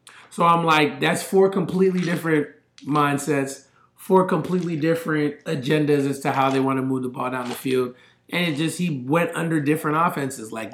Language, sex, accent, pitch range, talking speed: English, male, American, 130-160 Hz, 185 wpm